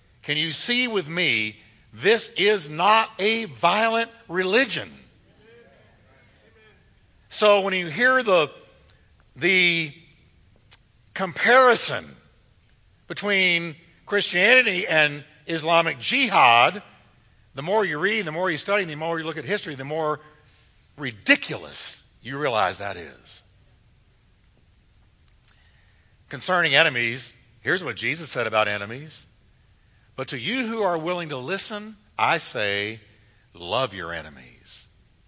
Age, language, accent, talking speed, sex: 60-79, English, American, 110 wpm, male